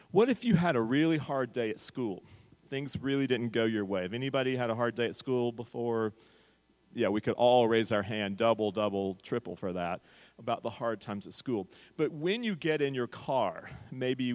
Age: 40-59